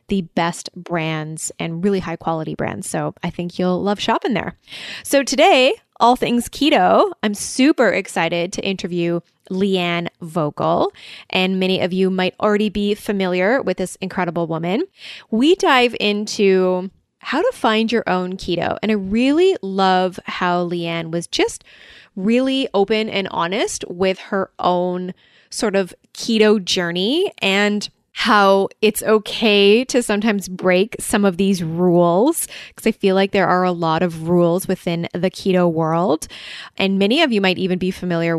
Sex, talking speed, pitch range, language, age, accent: female, 155 wpm, 175-215 Hz, English, 20-39, American